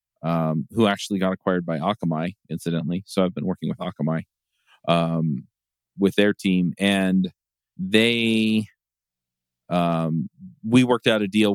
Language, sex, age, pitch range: English, male, 40-59, 85-100 Hz